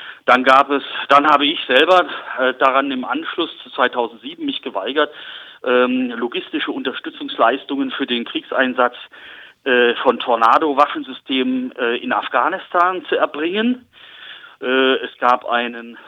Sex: male